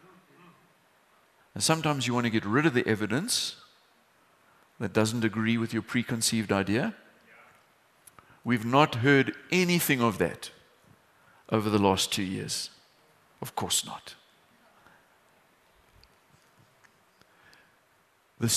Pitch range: 110-140 Hz